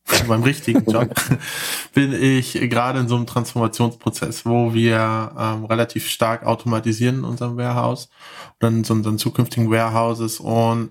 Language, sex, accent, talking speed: German, male, German, 140 wpm